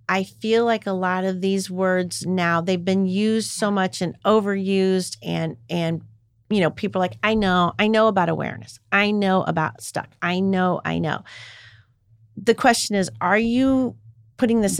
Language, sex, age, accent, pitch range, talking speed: English, female, 40-59, American, 165-220 Hz, 180 wpm